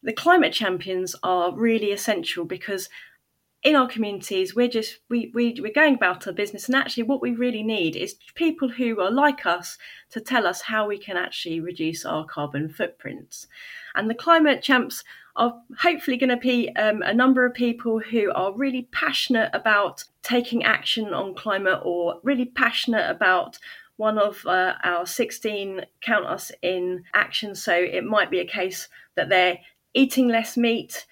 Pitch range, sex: 190-250 Hz, female